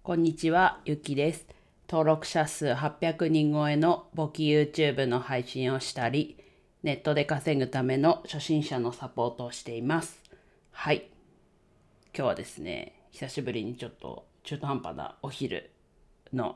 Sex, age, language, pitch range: female, 40-59, Japanese, 130-155 Hz